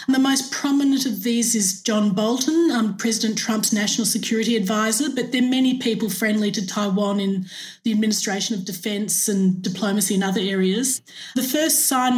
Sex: female